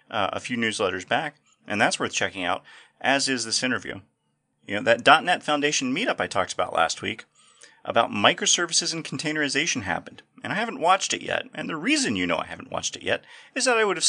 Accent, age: American, 30-49